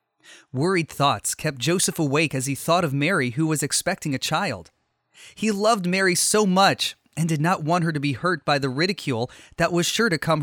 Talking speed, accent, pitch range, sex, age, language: 205 wpm, American, 135-185 Hz, male, 30-49, English